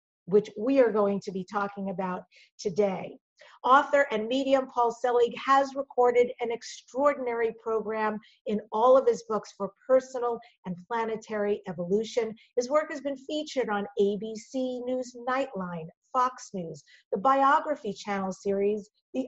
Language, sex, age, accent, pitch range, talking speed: English, female, 50-69, American, 205-265 Hz, 140 wpm